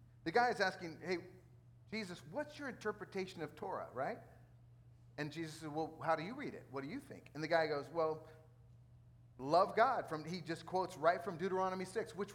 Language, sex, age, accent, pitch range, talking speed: English, male, 40-59, American, 125-190 Hz, 195 wpm